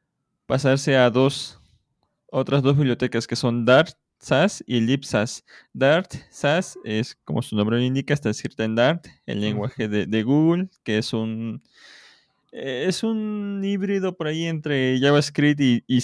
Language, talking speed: English, 155 wpm